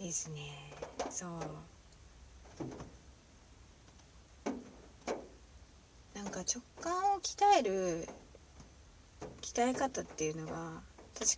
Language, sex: Japanese, female